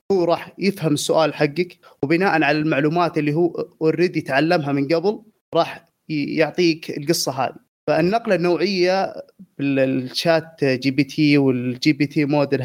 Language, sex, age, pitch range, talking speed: Arabic, male, 20-39, 150-185 Hz, 135 wpm